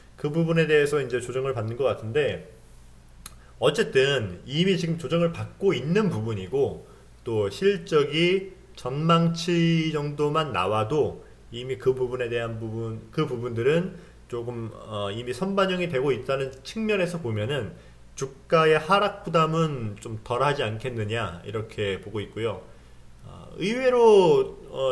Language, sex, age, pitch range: Korean, male, 30-49, 110-165 Hz